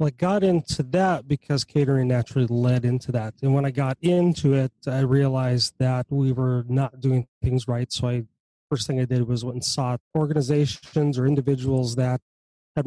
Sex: male